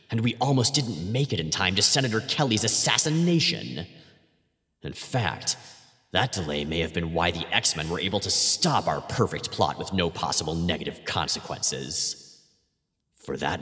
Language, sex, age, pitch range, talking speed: English, male, 30-49, 95-130 Hz, 160 wpm